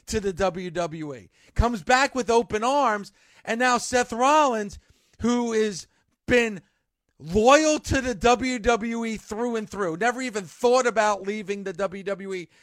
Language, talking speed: English, 140 wpm